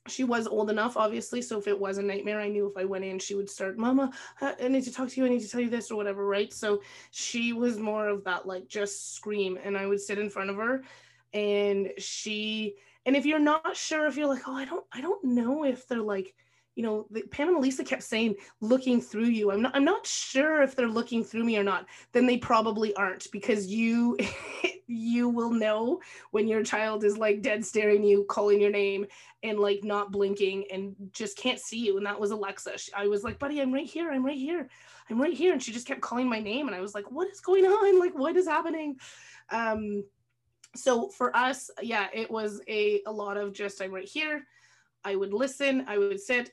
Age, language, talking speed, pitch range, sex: 20-39, English, 235 wpm, 205-260 Hz, female